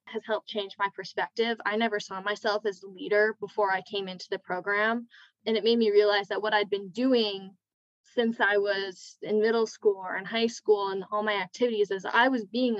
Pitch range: 190-220 Hz